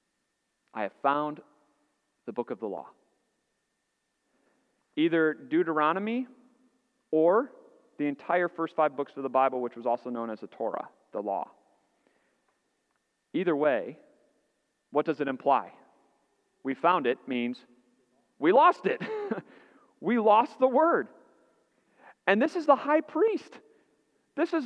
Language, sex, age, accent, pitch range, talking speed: English, male, 40-59, American, 155-265 Hz, 130 wpm